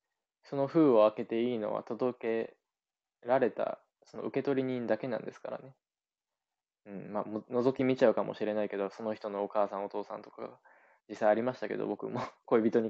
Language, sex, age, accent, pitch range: Japanese, male, 20-39, native, 105-135 Hz